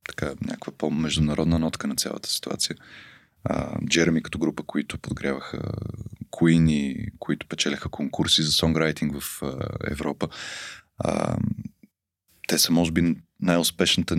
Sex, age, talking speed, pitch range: male, 20-39, 115 wpm, 80-95 Hz